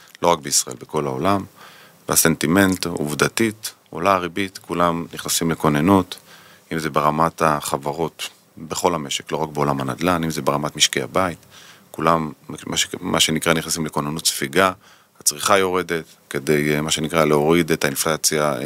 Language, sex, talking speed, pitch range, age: Hebrew, male, 130 wpm, 75-90 Hz, 30-49